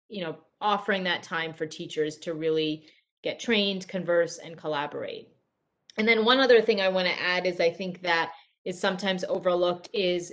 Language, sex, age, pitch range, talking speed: English, female, 30-49, 170-200 Hz, 180 wpm